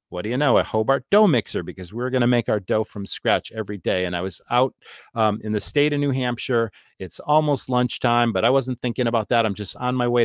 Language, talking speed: English, 260 wpm